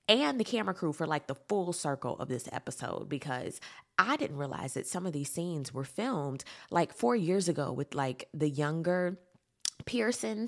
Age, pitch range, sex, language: 20-39, 145-205 Hz, female, English